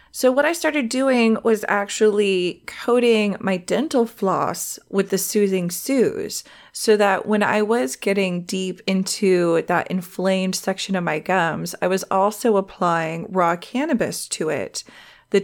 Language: English